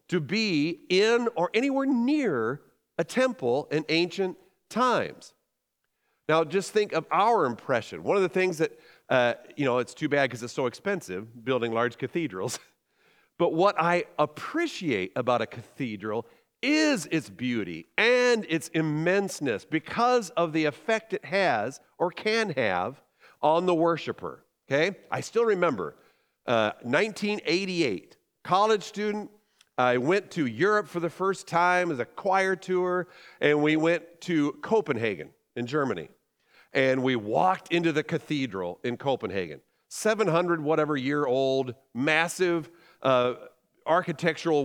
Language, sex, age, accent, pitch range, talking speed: English, male, 50-69, American, 145-200 Hz, 135 wpm